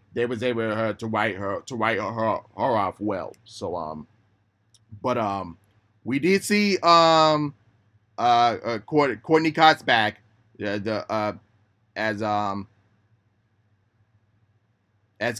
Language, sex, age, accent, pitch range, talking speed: English, male, 20-39, American, 105-125 Hz, 130 wpm